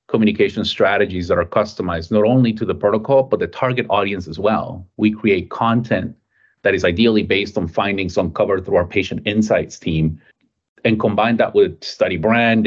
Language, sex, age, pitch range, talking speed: English, male, 30-49, 100-125 Hz, 175 wpm